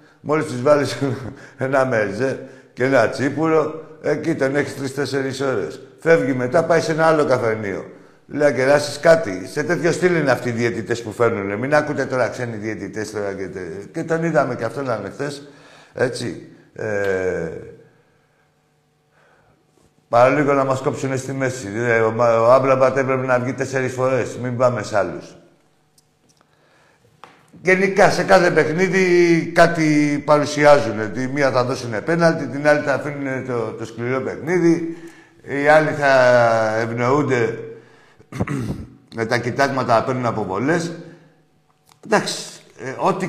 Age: 60-79